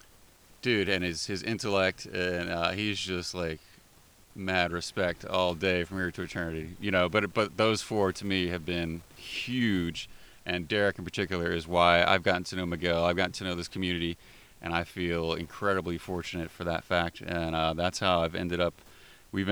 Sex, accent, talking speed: male, American, 190 wpm